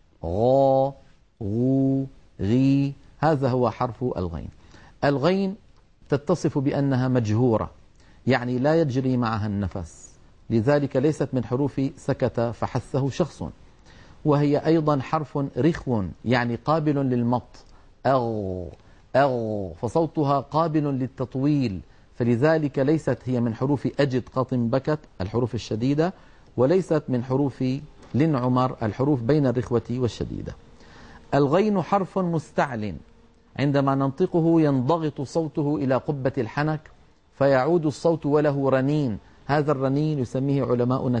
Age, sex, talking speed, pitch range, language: 50-69, male, 105 wpm, 120-150 Hz, Arabic